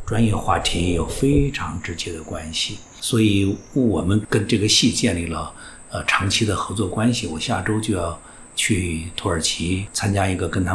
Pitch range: 90-120 Hz